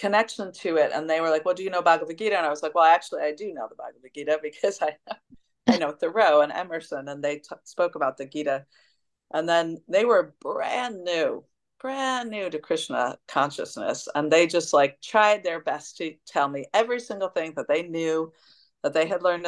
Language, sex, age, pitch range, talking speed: English, female, 40-59, 145-175 Hz, 215 wpm